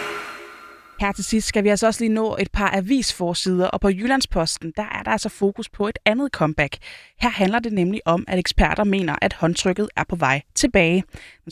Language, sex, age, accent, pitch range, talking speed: Danish, female, 20-39, native, 180-225 Hz, 205 wpm